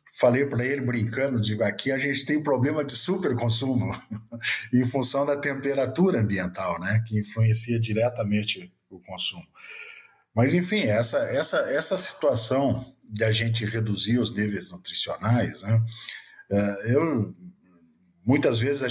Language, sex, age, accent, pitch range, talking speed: Portuguese, male, 50-69, Brazilian, 110-140 Hz, 135 wpm